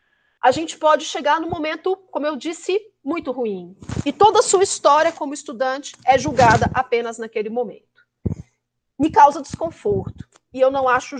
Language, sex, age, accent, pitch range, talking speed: Portuguese, female, 40-59, Brazilian, 225-295 Hz, 160 wpm